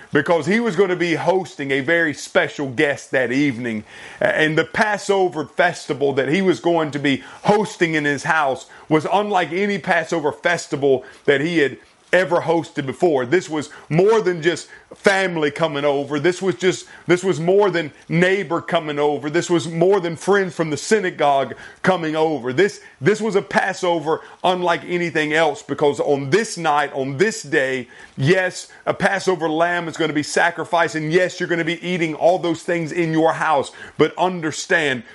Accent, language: American, English